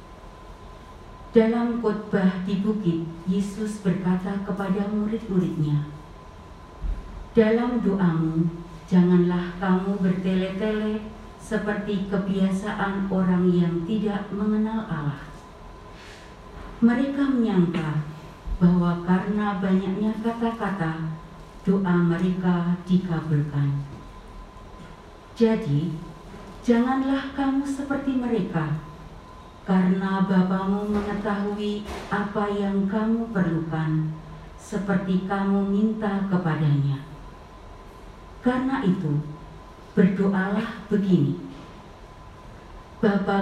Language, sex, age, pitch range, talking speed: Indonesian, female, 40-59, 170-210 Hz, 70 wpm